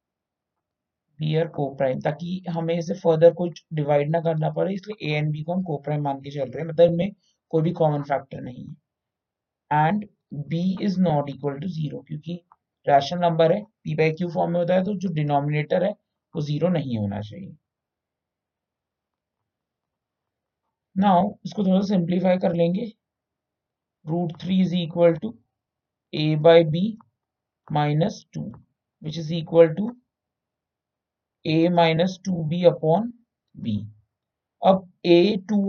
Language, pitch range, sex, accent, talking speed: Hindi, 145-185 Hz, male, native, 110 wpm